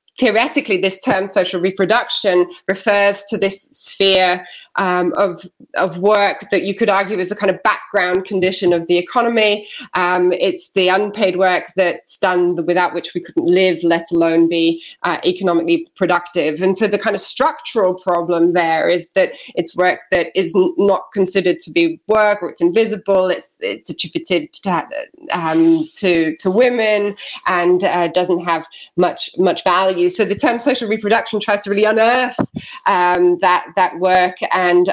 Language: English